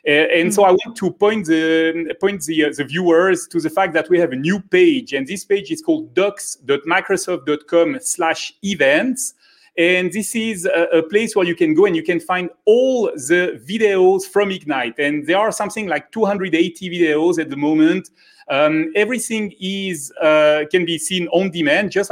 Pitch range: 160-215 Hz